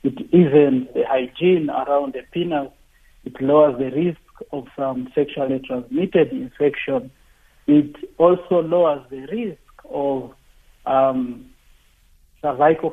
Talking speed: 110 wpm